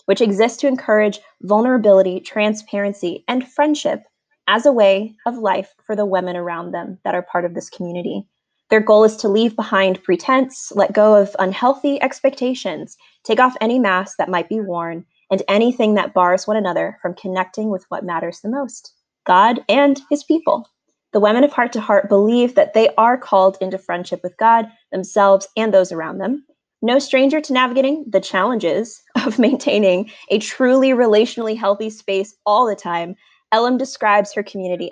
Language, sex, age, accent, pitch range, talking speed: English, female, 20-39, American, 190-250 Hz, 175 wpm